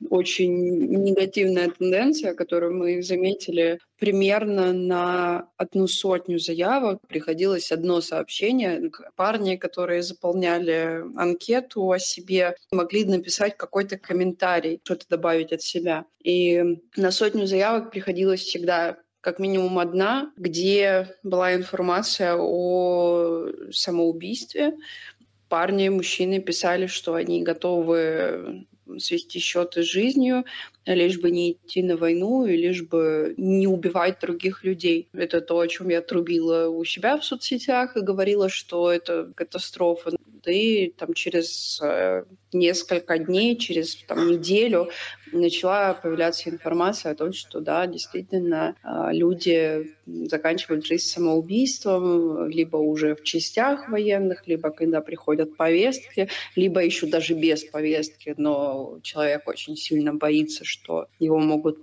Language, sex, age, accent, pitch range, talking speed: Russian, female, 20-39, native, 165-190 Hz, 120 wpm